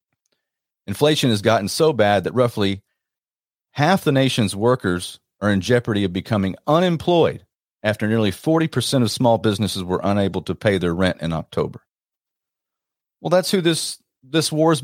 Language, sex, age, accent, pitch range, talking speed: English, male, 40-59, American, 95-120 Hz, 155 wpm